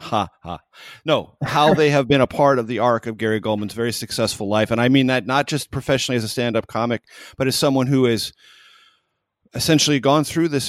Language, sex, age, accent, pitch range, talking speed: English, male, 30-49, American, 100-125 Hz, 215 wpm